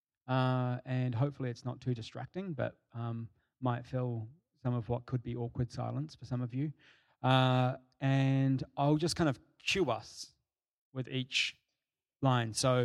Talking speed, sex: 160 wpm, male